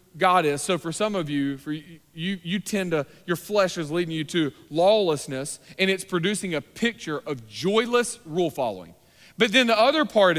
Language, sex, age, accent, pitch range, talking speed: English, male, 40-59, American, 160-230 Hz, 195 wpm